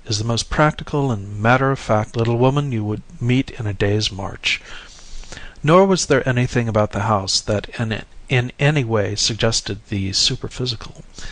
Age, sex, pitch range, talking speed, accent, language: 50-69, male, 105-130 Hz, 155 wpm, American, English